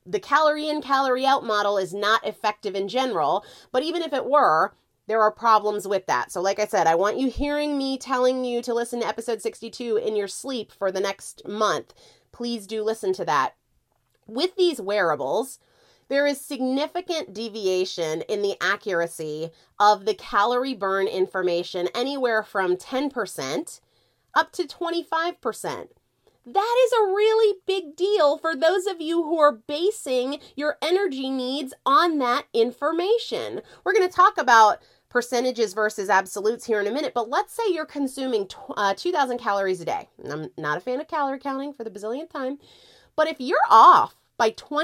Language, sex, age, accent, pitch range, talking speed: English, female, 30-49, American, 210-310 Hz, 170 wpm